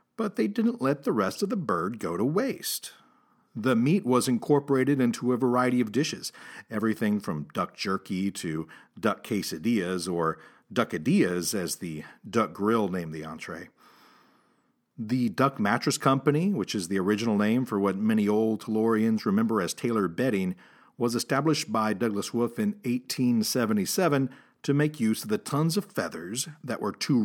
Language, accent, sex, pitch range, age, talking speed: English, American, male, 110-160 Hz, 50-69, 160 wpm